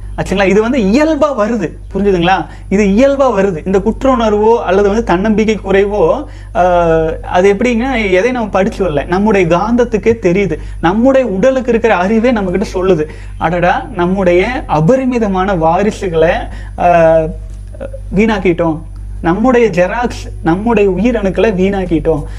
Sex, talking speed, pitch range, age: male, 115 wpm, 165-225 Hz, 30-49